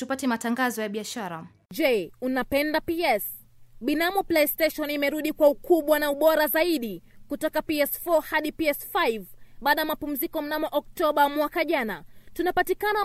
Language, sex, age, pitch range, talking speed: Swahili, female, 20-39, 265-335 Hz, 125 wpm